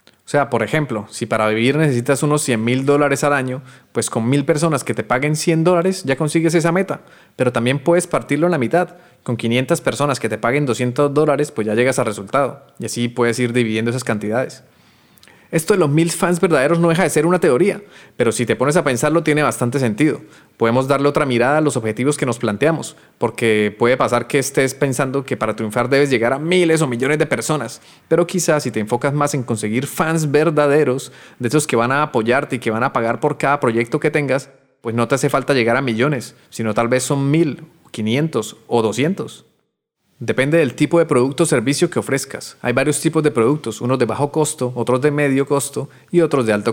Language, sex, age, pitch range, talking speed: Spanish, male, 30-49, 120-155 Hz, 220 wpm